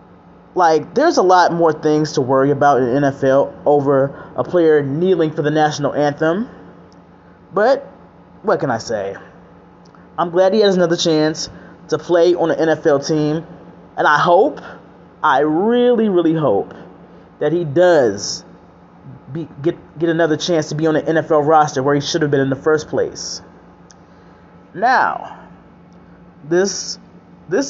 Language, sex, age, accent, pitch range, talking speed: English, male, 20-39, American, 150-175 Hz, 150 wpm